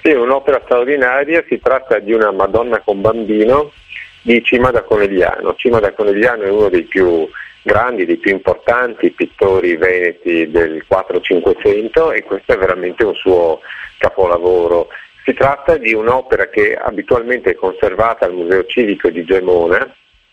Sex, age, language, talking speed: male, 50-69, Italian, 150 wpm